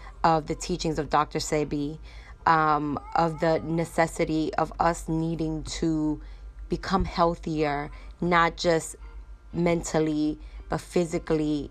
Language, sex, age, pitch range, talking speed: English, female, 20-39, 150-165 Hz, 110 wpm